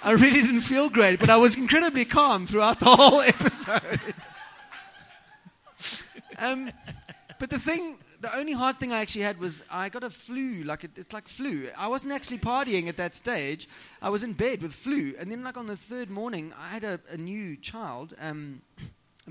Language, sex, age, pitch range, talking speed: English, male, 30-49, 160-230 Hz, 195 wpm